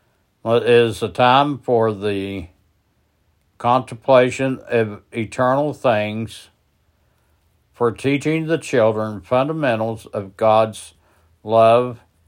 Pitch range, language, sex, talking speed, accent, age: 90-120 Hz, English, male, 90 wpm, American, 60-79